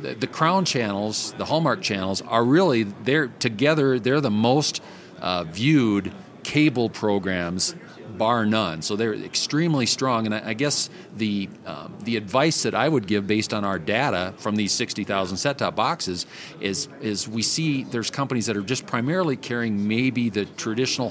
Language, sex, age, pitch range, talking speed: English, male, 40-59, 105-130 Hz, 160 wpm